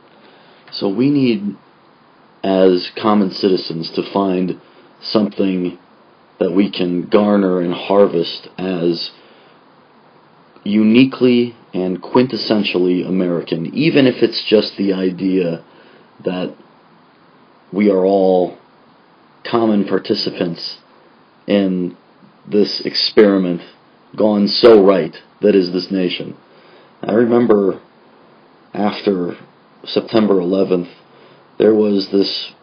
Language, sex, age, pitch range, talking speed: English, male, 30-49, 90-110 Hz, 90 wpm